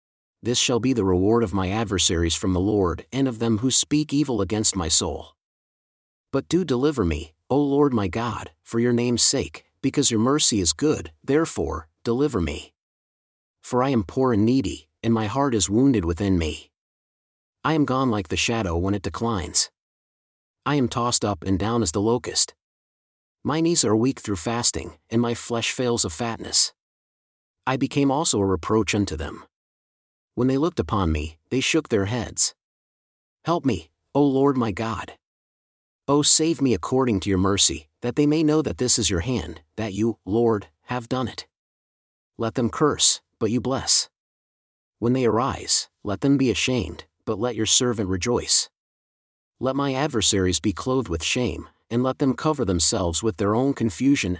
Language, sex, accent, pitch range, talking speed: English, male, American, 95-130 Hz, 180 wpm